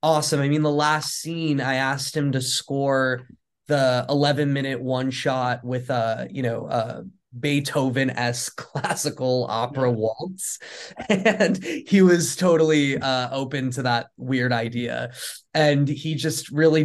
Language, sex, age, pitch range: English, male, 20-39, 125-150 Hz